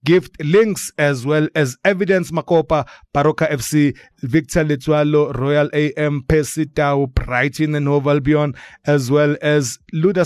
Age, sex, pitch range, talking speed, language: 30-49, male, 130-160 Hz, 130 wpm, English